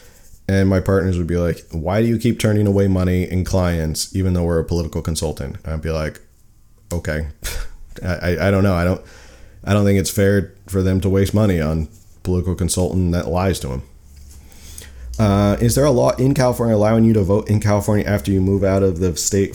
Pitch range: 85-105 Hz